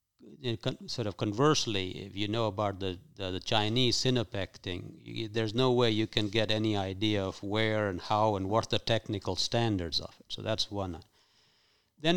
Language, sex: Danish, male